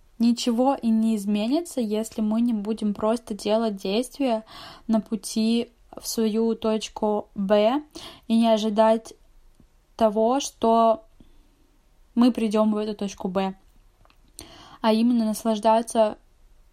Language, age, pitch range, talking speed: Russian, 10-29, 215-235 Hz, 110 wpm